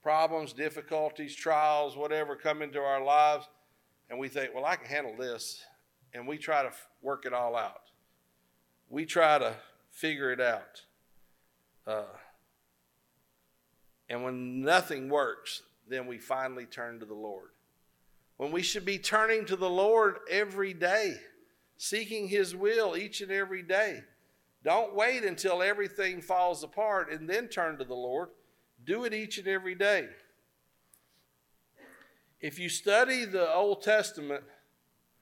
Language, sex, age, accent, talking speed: English, male, 50-69, American, 140 wpm